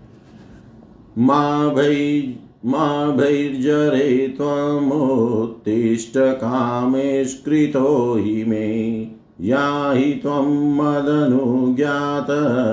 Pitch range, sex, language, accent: 115-140 Hz, male, Hindi, native